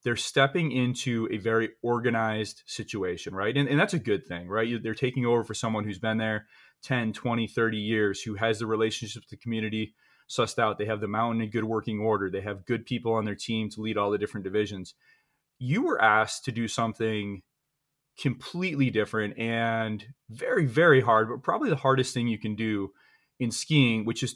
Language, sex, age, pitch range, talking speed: English, male, 30-49, 110-140 Hz, 200 wpm